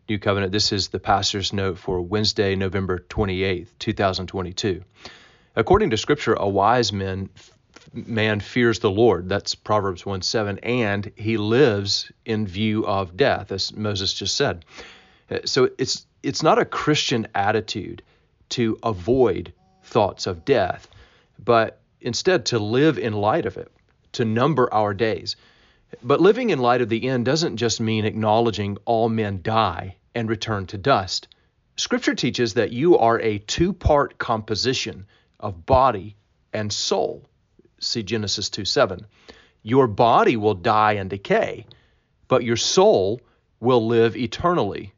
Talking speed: 140 wpm